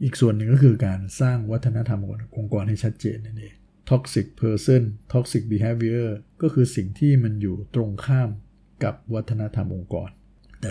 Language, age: Thai, 60-79